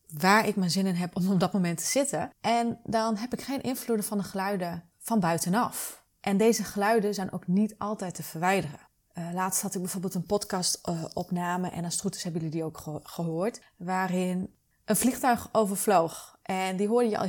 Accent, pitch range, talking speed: Dutch, 180-215 Hz, 200 wpm